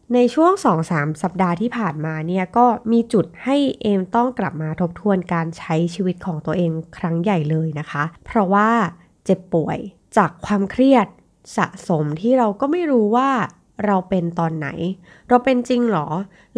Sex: female